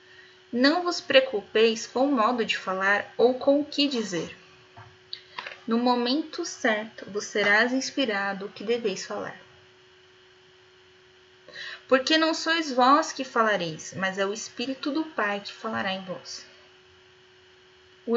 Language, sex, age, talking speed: Portuguese, female, 10-29, 130 wpm